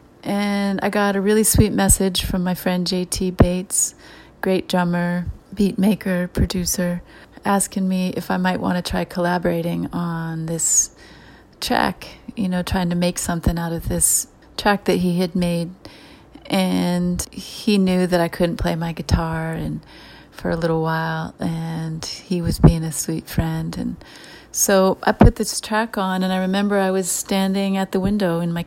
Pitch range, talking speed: 170-190 Hz, 170 wpm